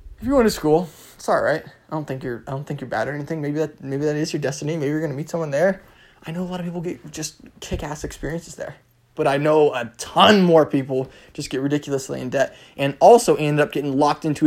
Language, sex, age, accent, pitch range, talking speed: English, male, 20-39, American, 135-215 Hz, 255 wpm